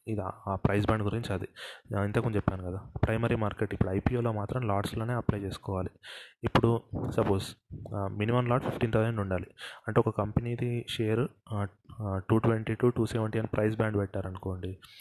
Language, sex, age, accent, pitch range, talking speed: Telugu, male, 20-39, native, 100-115 Hz, 140 wpm